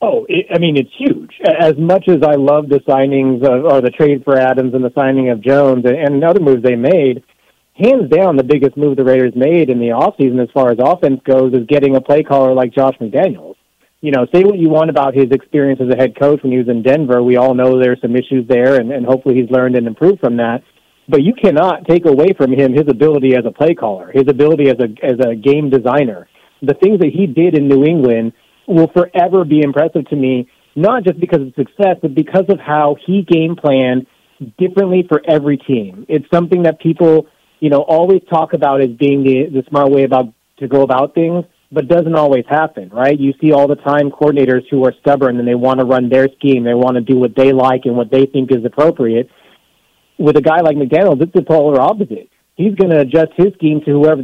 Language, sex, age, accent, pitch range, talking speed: English, male, 30-49, American, 130-160 Hz, 230 wpm